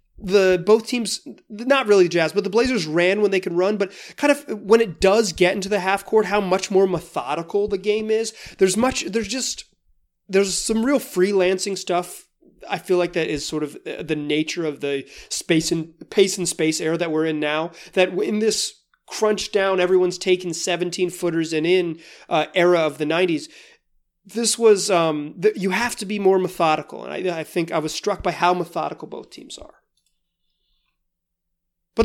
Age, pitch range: 30-49, 165-220 Hz